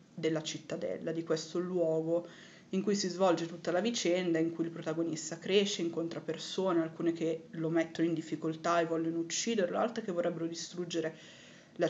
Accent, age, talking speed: native, 20-39, 165 wpm